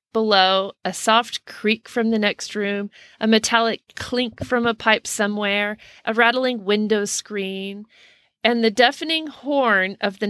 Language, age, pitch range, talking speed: English, 40-59, 200-245 Hz, 145 wpm